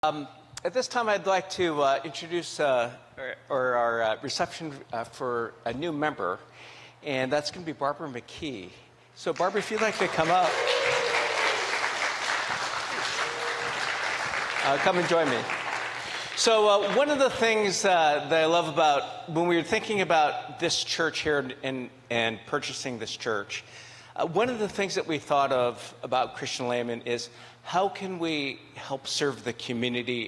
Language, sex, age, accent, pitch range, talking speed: English, male, 50-69, American, 120-170 Hz, 170 wpm